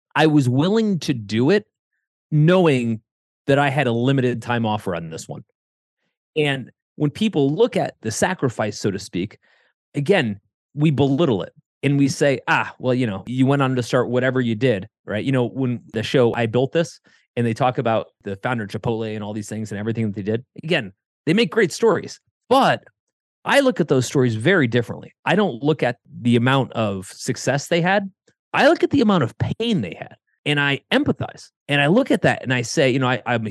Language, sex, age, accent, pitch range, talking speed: English, male, 30-49, American, 120-180 Hz, 215 wpm